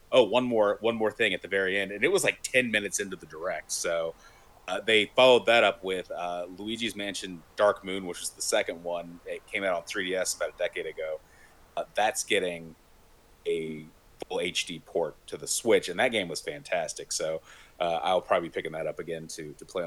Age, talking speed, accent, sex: 30-49, 215 wpm, American, male